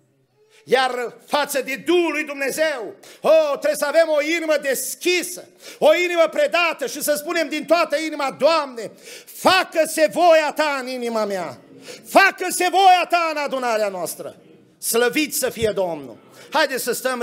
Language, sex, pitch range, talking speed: Romanian, male, 205-275 Hz, 145 wpm